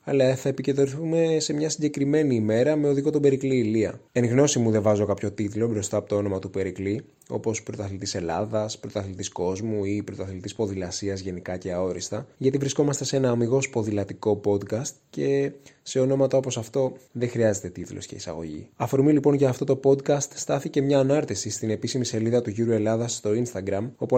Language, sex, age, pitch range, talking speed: Greek, male, 20-39, 105-135 Hz, 175 wpm